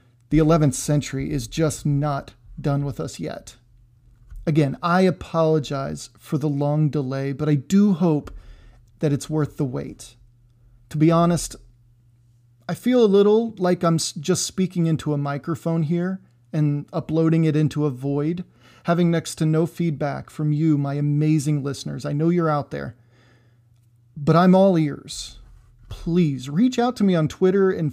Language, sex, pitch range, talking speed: English, male, 135-175 Hz, 160 wpm